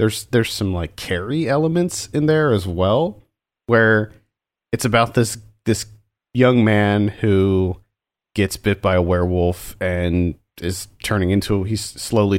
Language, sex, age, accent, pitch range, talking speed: English, male, 30-49, American, 95-120 Hz, 140 wpm